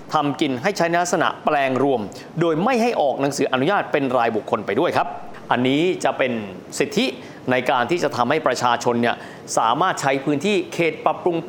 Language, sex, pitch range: Thai, male, 135-205 Hz